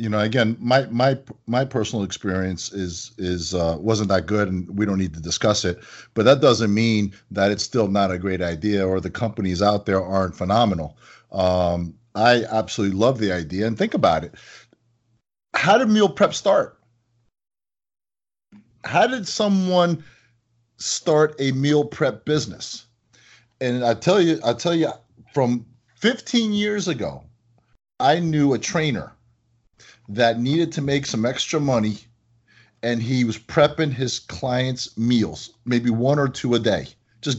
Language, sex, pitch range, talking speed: English, male, 105-135 Hz, 155 wpm